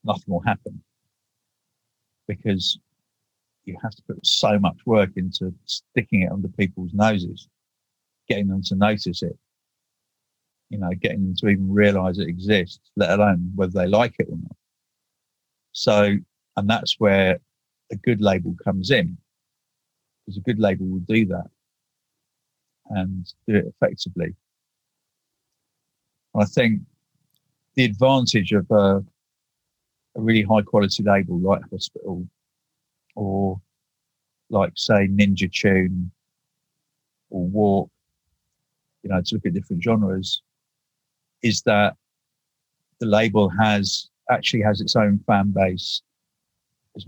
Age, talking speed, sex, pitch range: 50-69, 125 wpm, male, 95-115 Hz